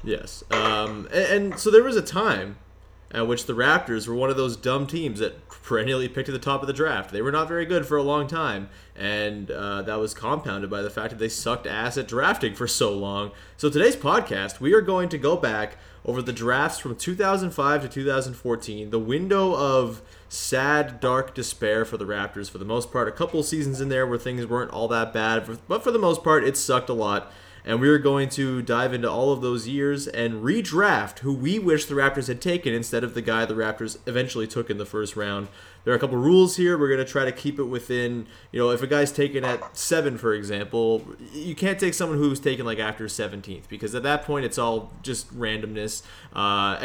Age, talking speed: 20-39, 225 wpm